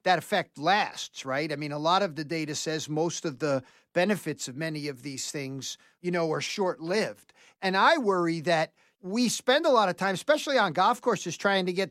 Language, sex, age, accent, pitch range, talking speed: English, male, 50-69, American, 165-220 Hz, 215 wpm